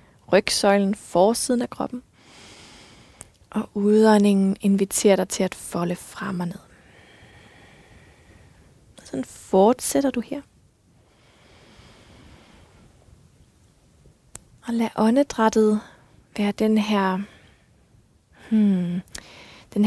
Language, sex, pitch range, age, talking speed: Danish, female, 195-225 Hz, 20-39, 70 wpm